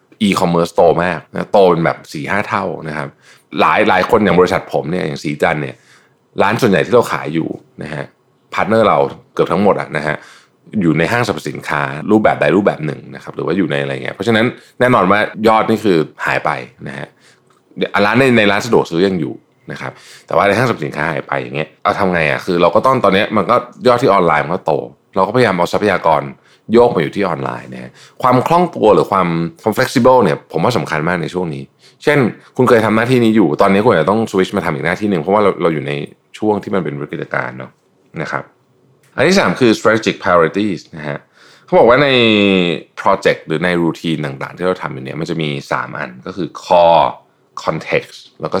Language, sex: Thai, male